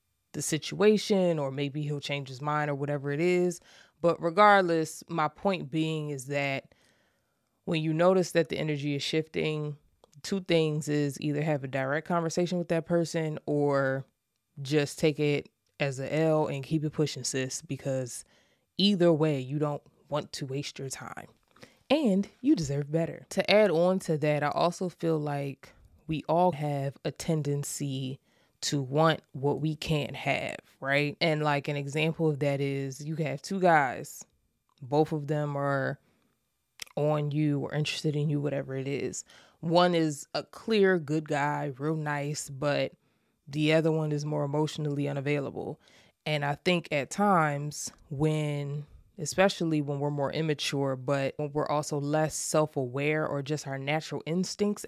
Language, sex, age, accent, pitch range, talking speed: English, female, 20-39, American, 145-165 Hz, 160 wpm